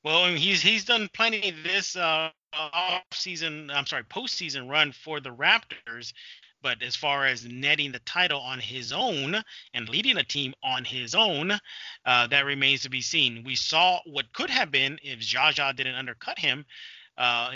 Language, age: English, 30-49